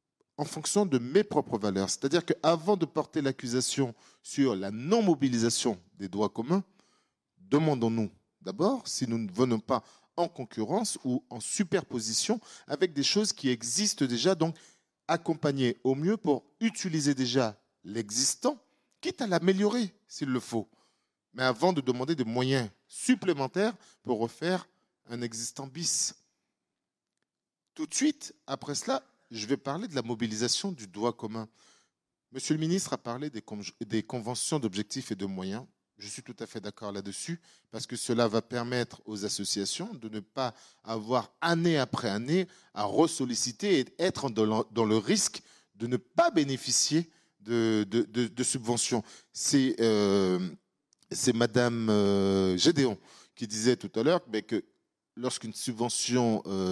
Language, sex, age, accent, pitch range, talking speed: French, male, 40-59, French, 115-165 Hz, 150 wpm